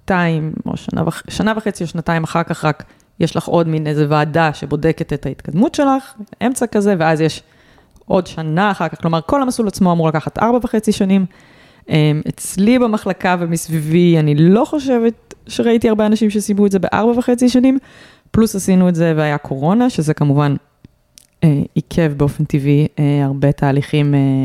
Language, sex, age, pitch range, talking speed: Hebrew, female, 20-39, 145-190 Hz, 160 wpm